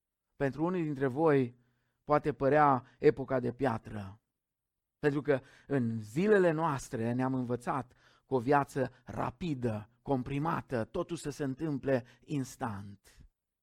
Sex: male